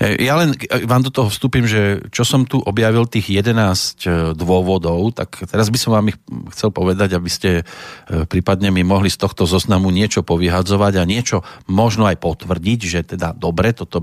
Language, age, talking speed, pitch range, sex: Slovak, 40-59, 175 wpm, 95-125 Hz, male